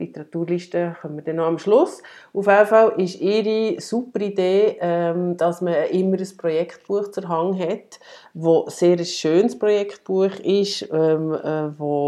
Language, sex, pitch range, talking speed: German, female, 155-195 Hz, 140 wpm